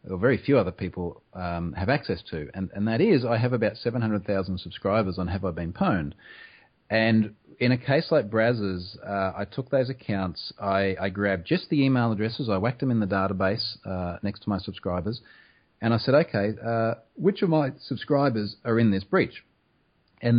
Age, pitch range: 30-49, 95-115 Hz